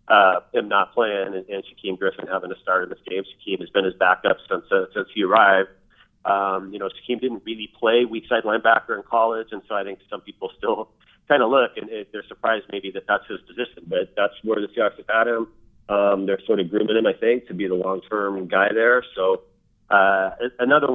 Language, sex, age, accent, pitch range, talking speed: English, male, 30-49, American, 95-115 Hz, 230 wpm